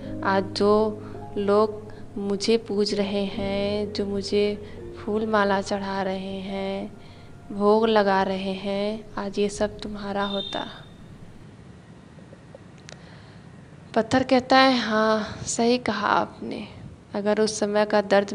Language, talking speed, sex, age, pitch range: Hindi, 115 wpm, female, 20-39, 205-220 Hz